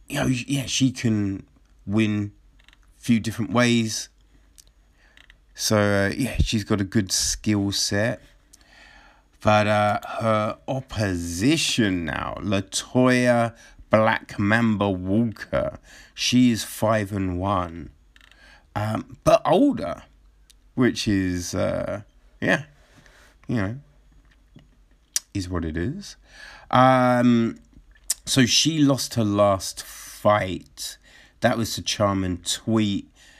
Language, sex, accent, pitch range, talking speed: English, male, British, 85-115 Hz, 100 wpm